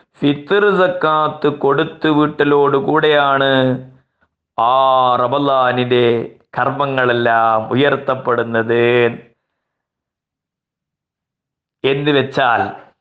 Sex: male